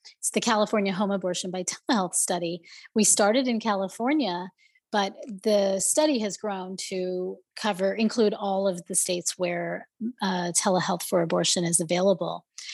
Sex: female